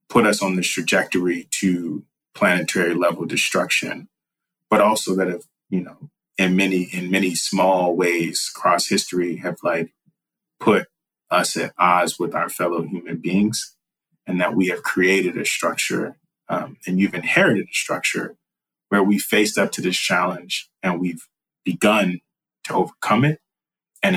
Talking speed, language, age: 150 wpm, English, 30-49